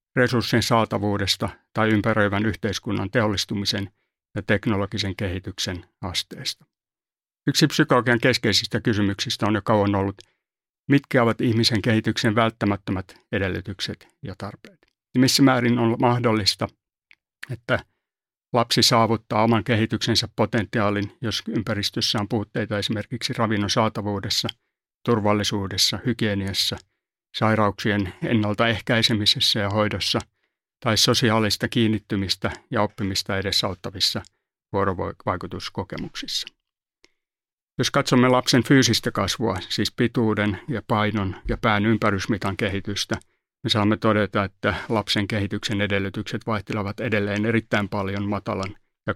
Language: Finnish